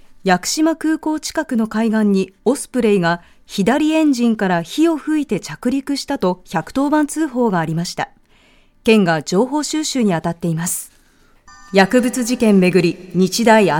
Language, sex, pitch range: Japanese, female, 190-265 Hz